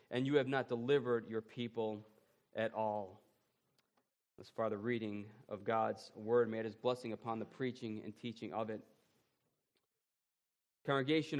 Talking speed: 145 wpm